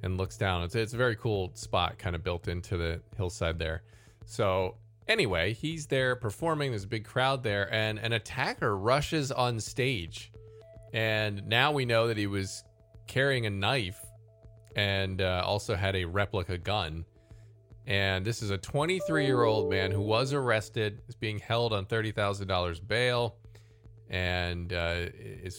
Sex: male